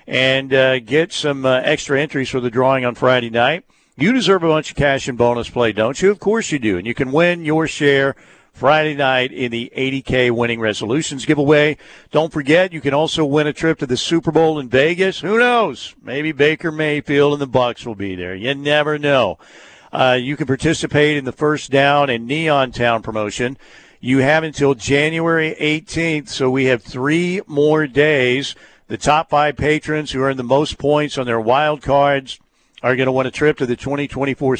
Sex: male